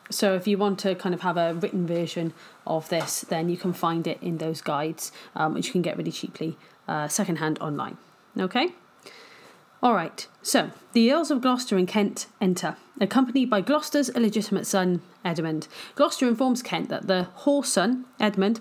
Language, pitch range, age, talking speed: English, 180-230 Hz, 30-49, 180 wpm